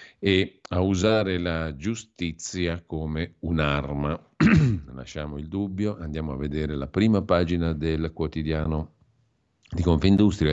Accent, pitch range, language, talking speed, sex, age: native, 80-95 Hz, Italian, 115 wpm, male, 50-69